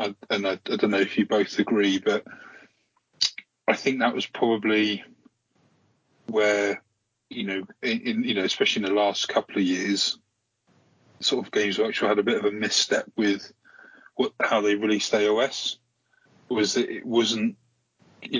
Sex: male